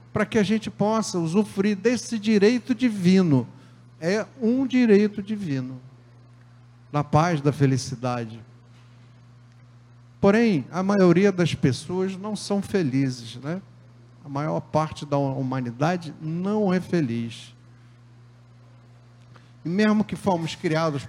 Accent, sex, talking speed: Brazilian, male, 110 wpm